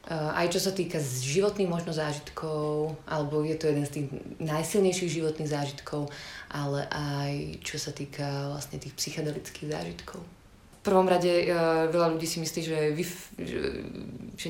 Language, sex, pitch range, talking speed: Slovak, female, 145-170 Hz, 145 wpm